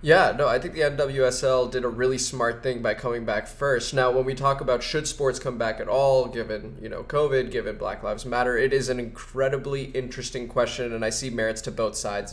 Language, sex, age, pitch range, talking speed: English, male, 20-39, 120-135 Hz, 230 wpm